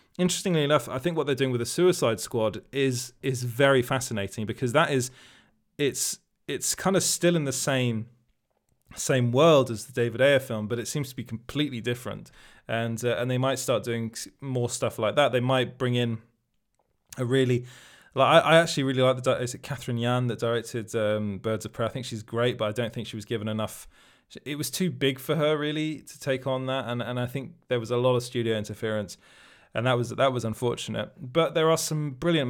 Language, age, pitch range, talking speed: English, 20-39, 120-145 Hz, 220 wpm